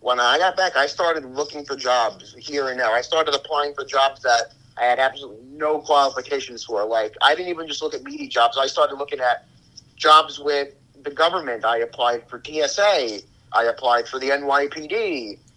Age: 30-49